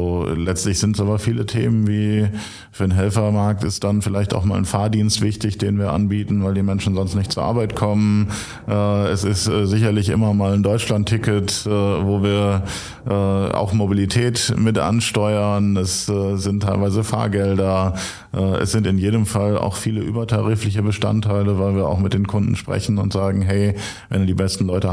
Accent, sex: German, male